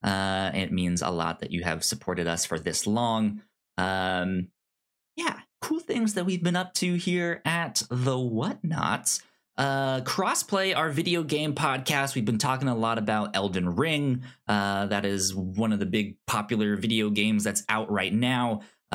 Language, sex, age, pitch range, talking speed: English, male, 20-39, 100-140 Hz, 175 wpm